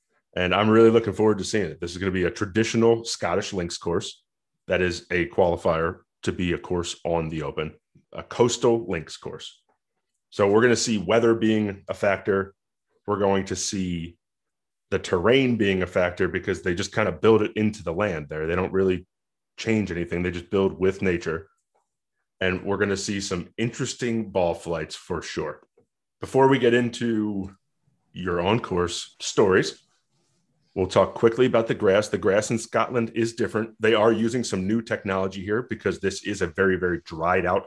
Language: English